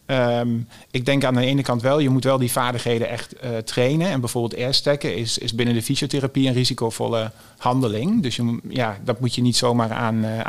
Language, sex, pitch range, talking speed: Dutch, male, 115-130 Hz, 210 wpm